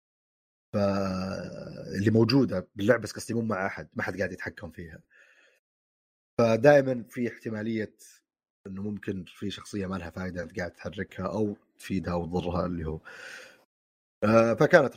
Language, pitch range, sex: Arabic, 95-130 Hz, male